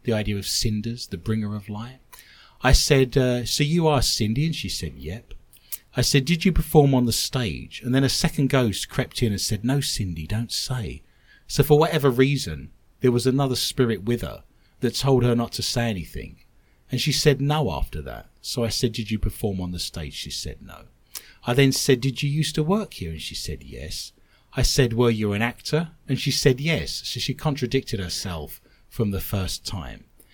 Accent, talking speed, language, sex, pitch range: British, 210 wpm, English, male, 95-140 Hz